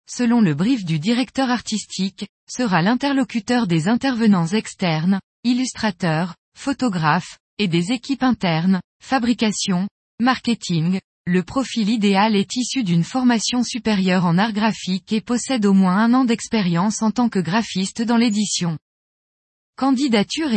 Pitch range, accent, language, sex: 190-245 Hz, French, French, female